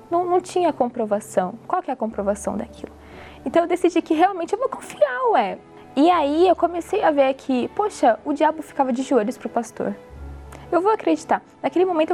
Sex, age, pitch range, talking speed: female, 20-39, 220-305 Hz, 200 wpm